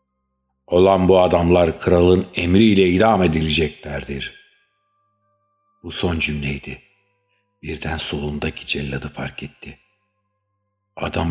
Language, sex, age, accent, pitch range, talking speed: Turkish, male, 60-79, native, 75-85 Hz, 85 wpm